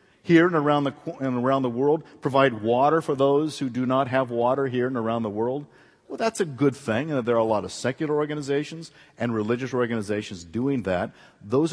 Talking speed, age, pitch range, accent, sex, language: 215 wpm, 50-69, 120-160 Hz, American, male, English